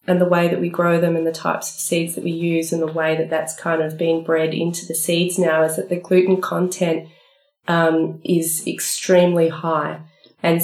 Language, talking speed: English, 215 wpm